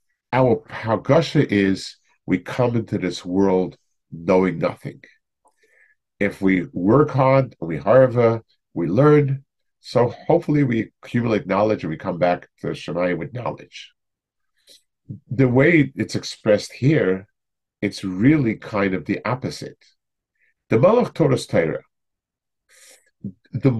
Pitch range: 95-130 Hz